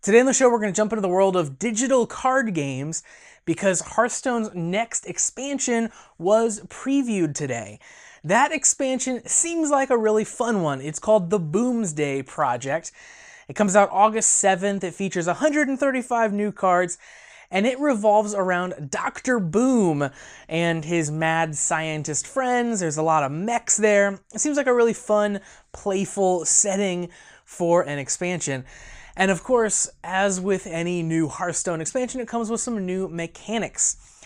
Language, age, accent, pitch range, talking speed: English, 20-39, American, 165-225 Hz, 155 wpm